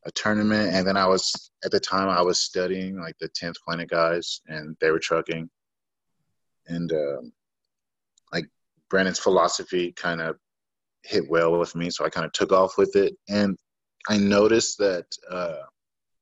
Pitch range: 85-125 Hz